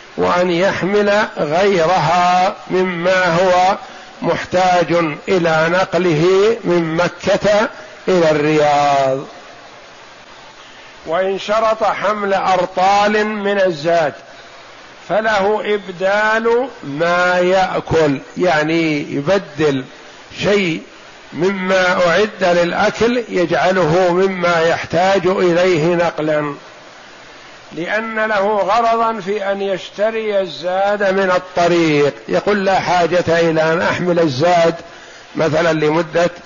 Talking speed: 85 wpm